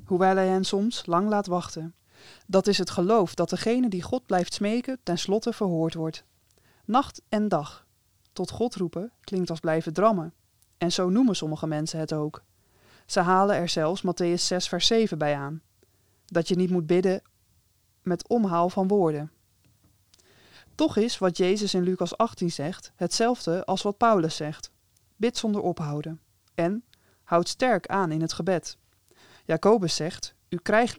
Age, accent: 20-39, Dutch